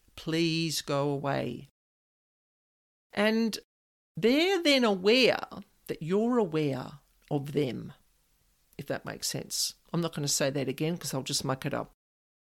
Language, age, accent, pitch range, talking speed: English, 50-69, Australian, 155-225 Hz, 140 wpm